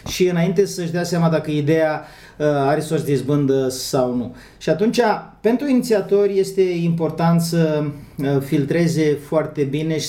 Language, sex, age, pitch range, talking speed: Romanian, male, 30-49, 140-185 Hz, 145 wpm